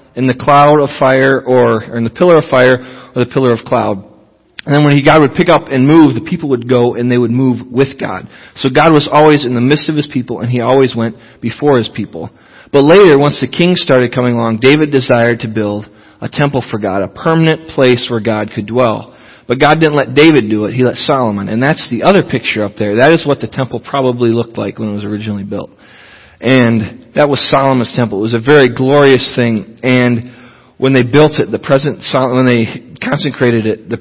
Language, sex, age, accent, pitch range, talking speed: English, male, 40-59, American, 115-145 Hz, 230 wpm